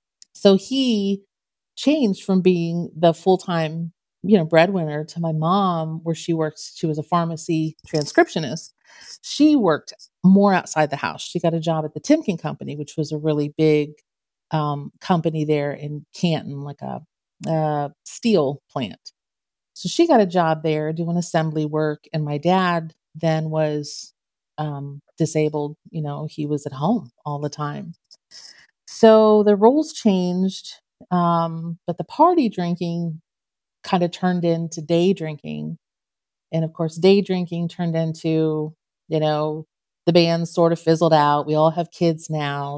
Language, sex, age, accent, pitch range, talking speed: English, female, 40-59, American, 150-180 Hz, 155 wpm